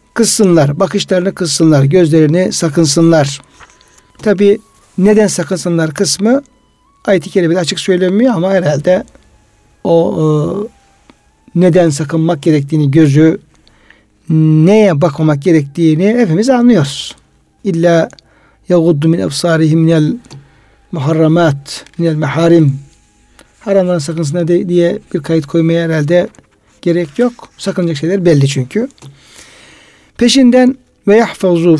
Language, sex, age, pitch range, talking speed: Turkish, male, 60-79, 155-195 Hz, 90 wpm